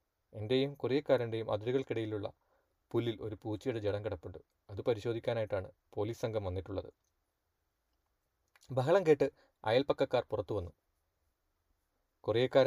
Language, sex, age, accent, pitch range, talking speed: Malayalam, male, 30-49, native, 90-120 Hz, 90 wpm